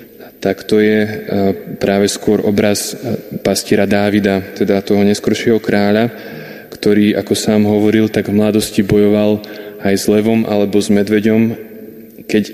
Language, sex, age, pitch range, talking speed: Slovak, male, 20-39, 100-110 Hz, 130 wpm